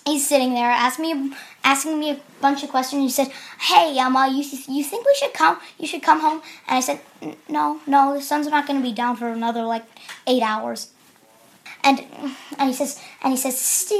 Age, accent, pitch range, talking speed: 10-29, American, 255-315 Hz, 215 wpm